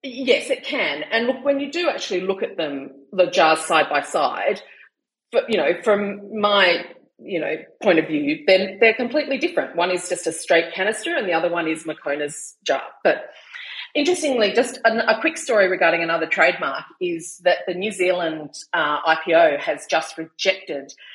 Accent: Australian